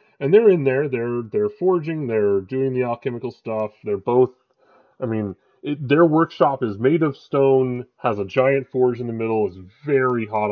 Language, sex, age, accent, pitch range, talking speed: English, female, 30-49, American, 105-145 Hz, 185 wpm